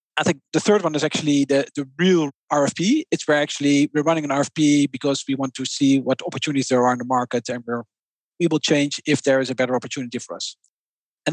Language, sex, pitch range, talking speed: English, male, 140-175 Hz, 230 wpm